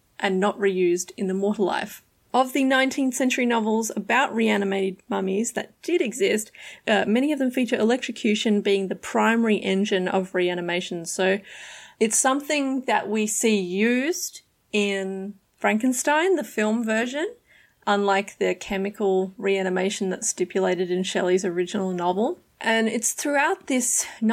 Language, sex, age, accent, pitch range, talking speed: English, female, 30-49, Australian, 195-230 Hz, 140 wpm